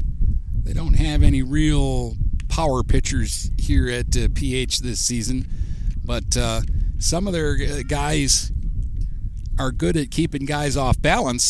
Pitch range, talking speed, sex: 80-120 Hz, 135 wpm, male